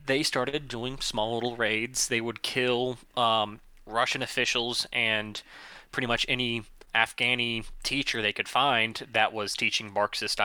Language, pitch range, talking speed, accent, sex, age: English, 115-130 Hz, 145 wpm, American, male, 20-39